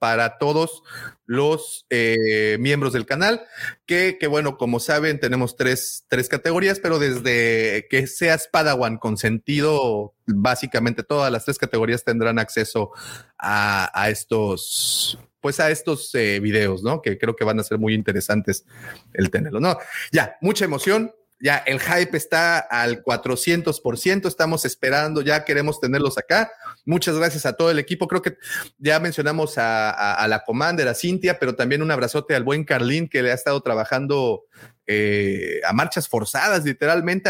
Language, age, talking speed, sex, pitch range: Spanish, 30-49, 160 wpm, male, 120-160 Hz